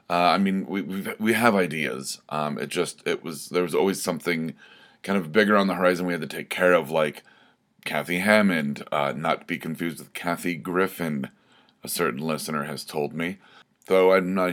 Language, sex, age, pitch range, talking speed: English, male, 30-49, 80-100 Hz, 200 wpm